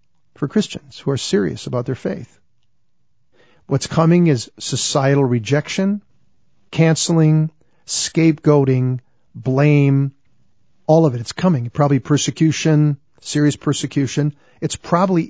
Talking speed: 105 wpm